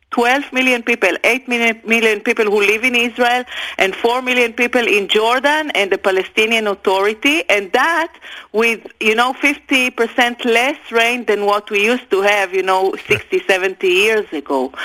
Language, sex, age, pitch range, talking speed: English, female, 40-59, 195-255 Hz, 160 wpm